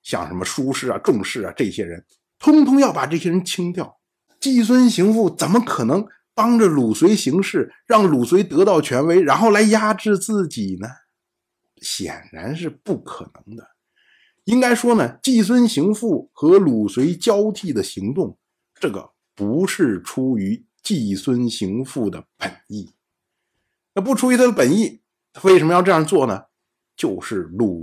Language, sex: Chinese, male